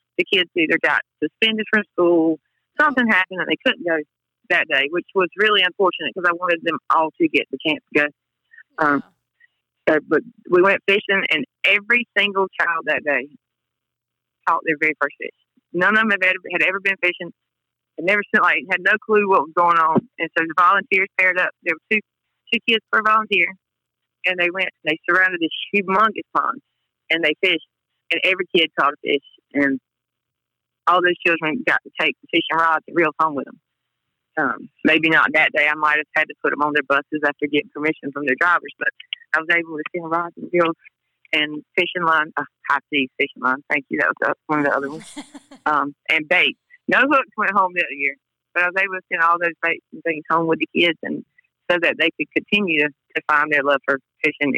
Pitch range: 150-195 Hz